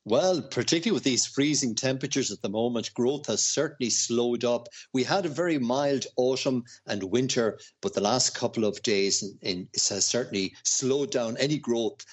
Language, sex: English, male